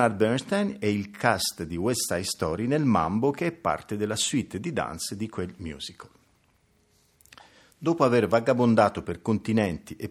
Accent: native